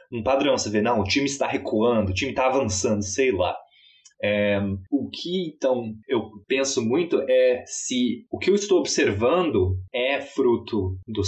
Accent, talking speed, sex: Brazilian, 165 wpm, male